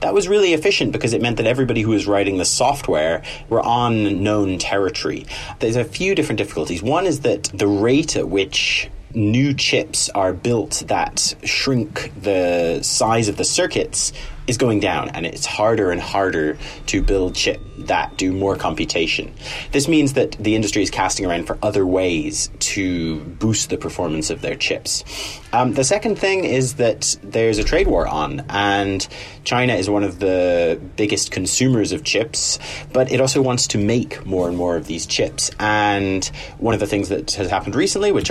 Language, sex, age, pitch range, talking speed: English, male, 30-49, 90-120 Hz, 185 wpm